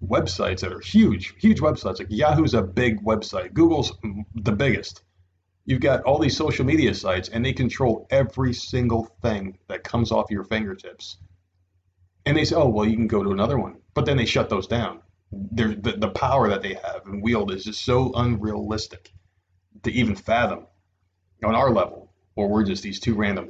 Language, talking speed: English, 190 wpm